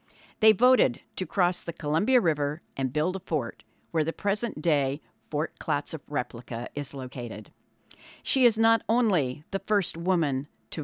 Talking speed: 155 wpm